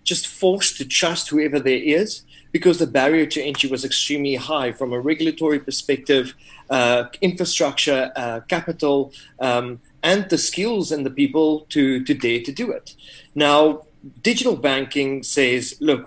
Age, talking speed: 30-49, 155 wpm